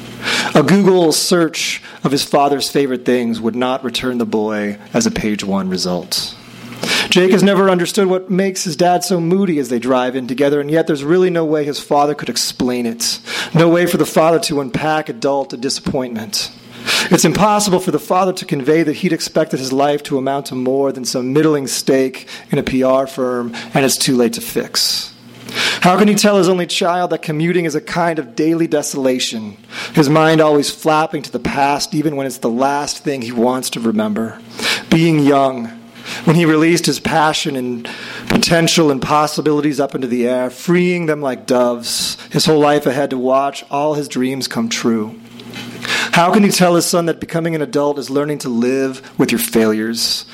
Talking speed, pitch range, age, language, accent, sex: 195 wpm, 125-165 Hz, 30-49, English, American, male